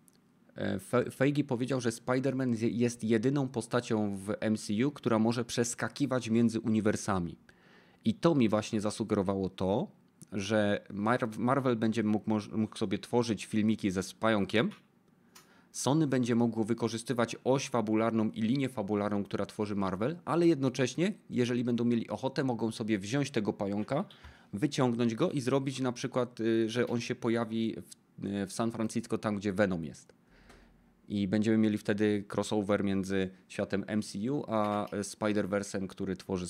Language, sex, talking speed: Polish, male, 145 wpm